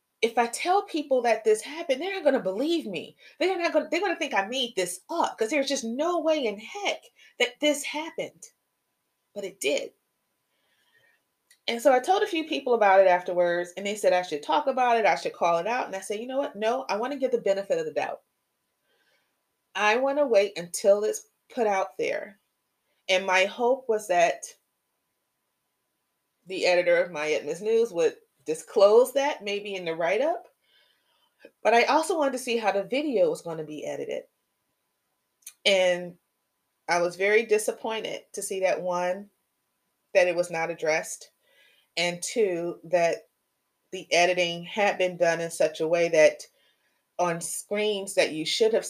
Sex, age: female, 30-49